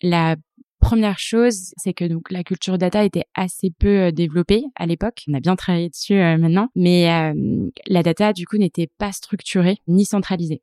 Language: French